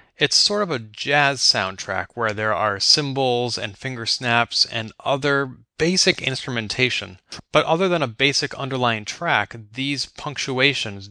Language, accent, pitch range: English, American, 110-150 Hz